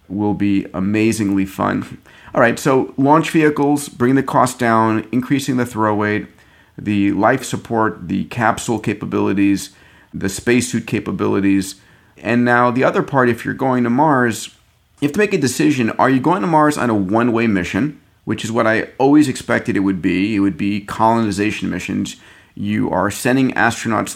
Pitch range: 100-120 Hz